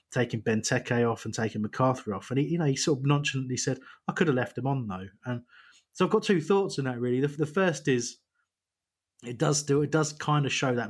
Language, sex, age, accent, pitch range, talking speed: English, male, 30-49, British, 110-140 Hz, 250 wpm